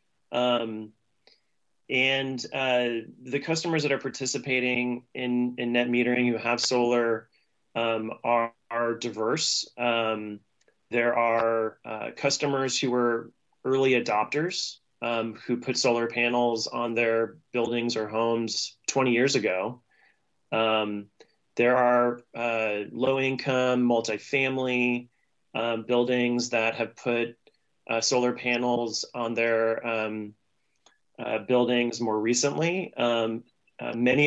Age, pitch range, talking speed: 30-49, 115-130 Hz, 115 wpm